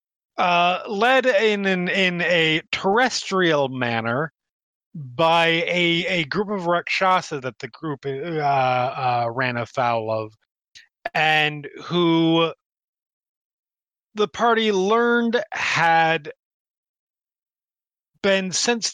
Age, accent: 30-49, American